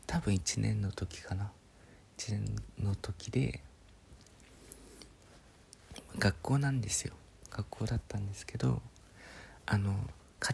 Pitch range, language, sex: 95-120 Hz, Japanese, male